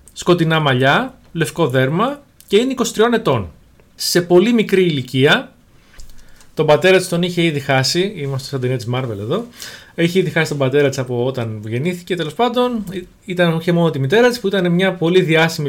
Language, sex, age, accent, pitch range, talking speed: Greek, male, 30-49, native, 130-200 Hz, 180 wpm